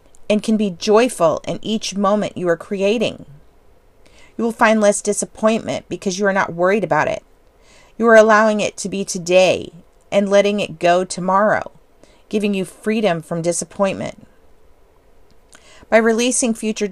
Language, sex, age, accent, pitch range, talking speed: English, female, 40-59, American, 185-220 Hz, 150 wpm